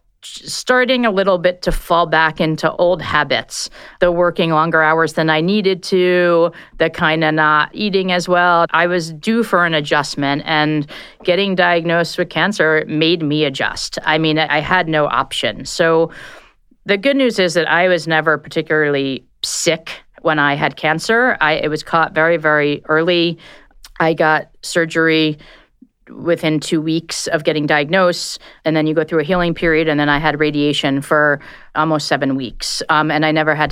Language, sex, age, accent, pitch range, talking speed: English, female, 40-59, American, 150-175 Hz, 175 wpm